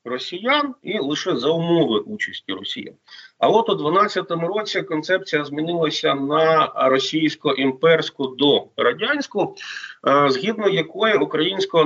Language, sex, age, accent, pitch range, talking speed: Ukrainian, male, 40-59, native, 140-195 Hz, 110 wpm